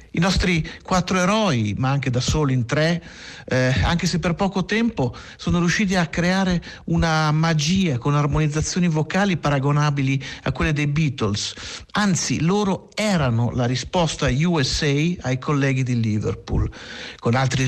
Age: 50-69